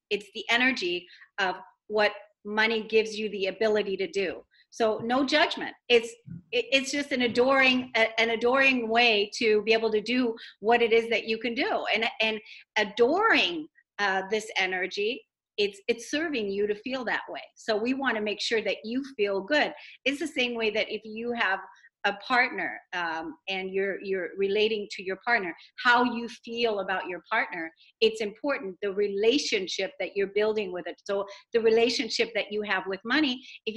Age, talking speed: 40-59, 180 wpm